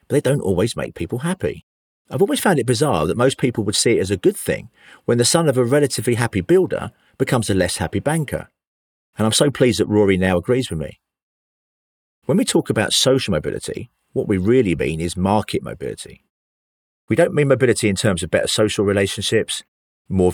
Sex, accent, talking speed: male, British, 205 wpm